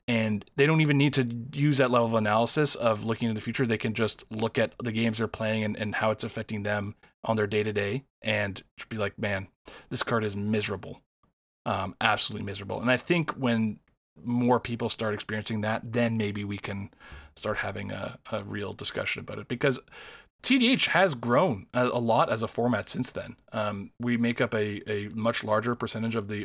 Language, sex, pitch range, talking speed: English, male, 105-125 Hz, 205 wpm